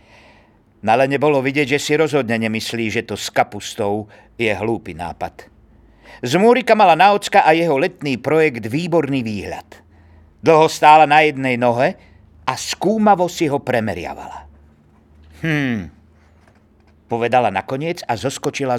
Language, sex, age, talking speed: Slovak, male, 50-69, 120 wpm